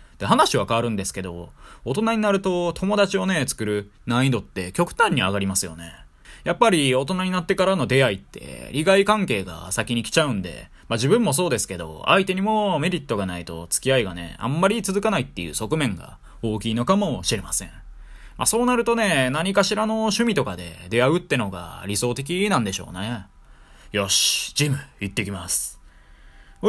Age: 20-39